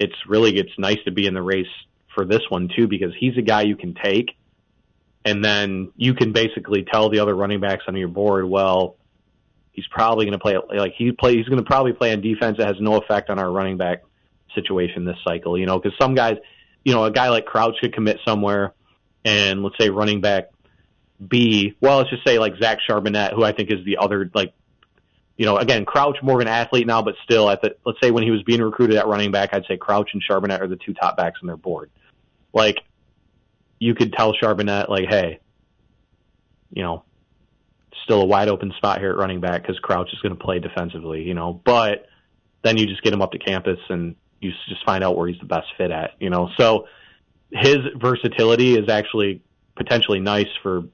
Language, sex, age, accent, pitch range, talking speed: English, male, 30-49, American, 95-115 Hz, 220 wpm